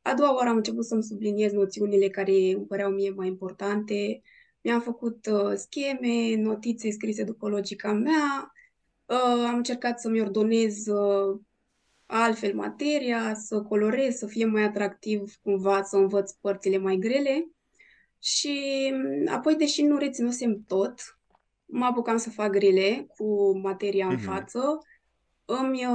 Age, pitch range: 20-39, 195-250 Hz